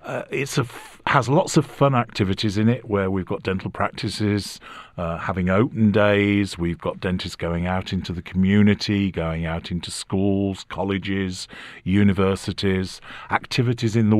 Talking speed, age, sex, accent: 150 wpm, 50-69, male, British